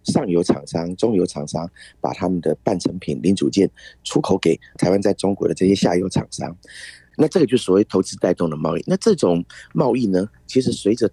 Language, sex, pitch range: Chinese, male, 90-115 Hz